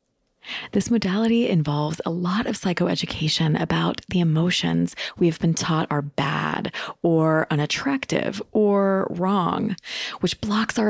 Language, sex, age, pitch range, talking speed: English, female, 30-49, 150-200 Hz, 125 wpm